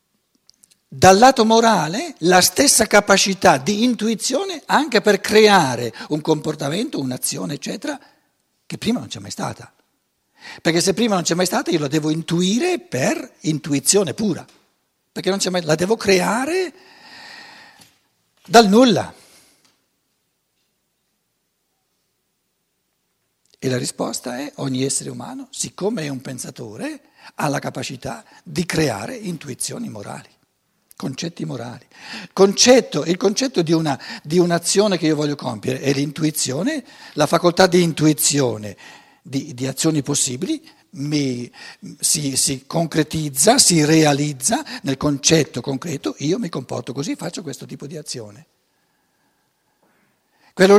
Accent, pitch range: native, 145-220 Hz